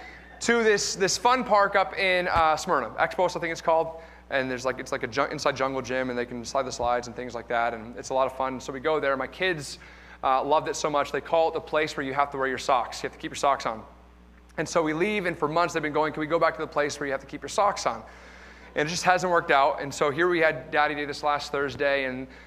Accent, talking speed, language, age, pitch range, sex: American, 300 wpm, English, 30-49, 125-165 Hz, male